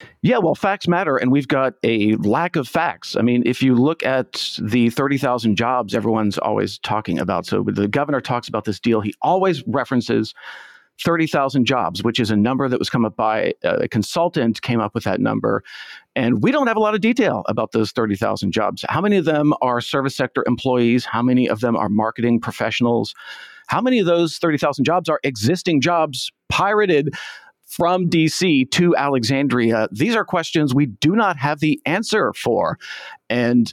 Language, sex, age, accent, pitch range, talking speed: English, male, 40-59, American, 115-160 Hz, 185 wpm